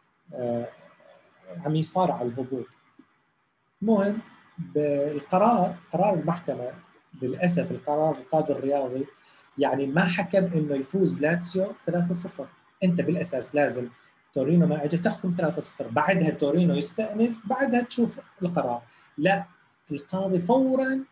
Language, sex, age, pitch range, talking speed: Arabic, male, 30-49, 135-185 Hz, 105 wpm